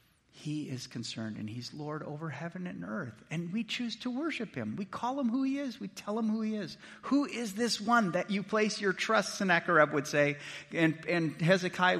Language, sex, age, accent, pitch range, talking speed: English, male, 50-69, American, 130-185 Hz, 215 wpm